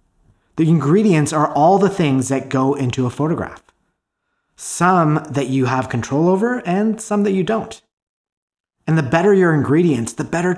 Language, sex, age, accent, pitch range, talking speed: English, male, 30-49, American, 120-165 Hz, 165 wpm